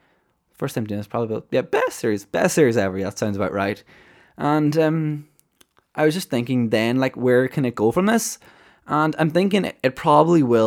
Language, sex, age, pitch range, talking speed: English, male, 20-39, 100-130 Hz, 210 wpm